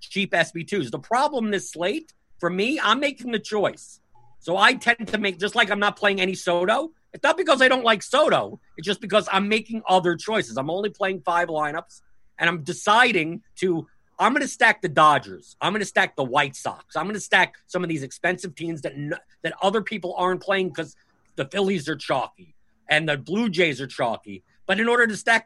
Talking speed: 215 wpm